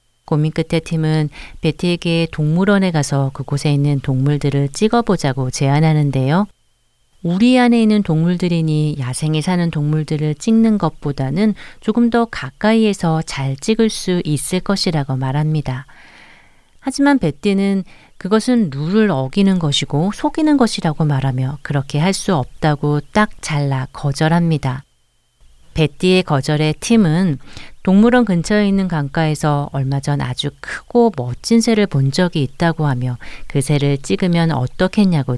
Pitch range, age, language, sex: 140-195 Hz, 40-59, Korean, female